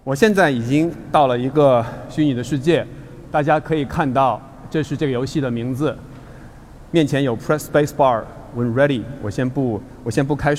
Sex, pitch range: male, 120-155 Hz